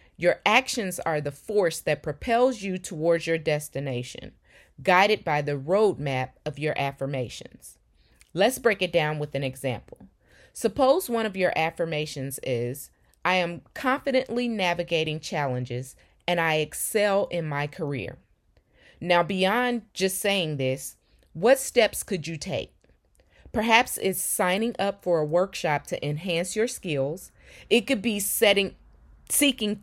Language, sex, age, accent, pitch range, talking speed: English, female, 30-49, American, 150-210 Hz, 135 wpm